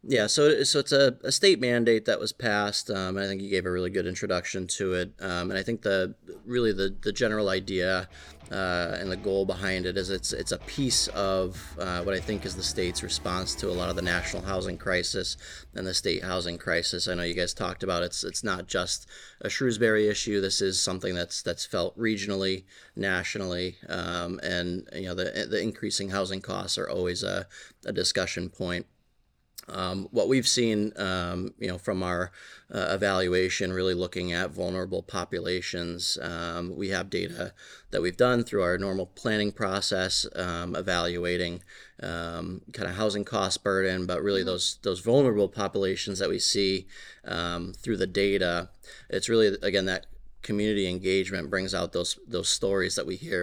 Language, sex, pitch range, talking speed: English, male, 90-100 Hz, 185 wpm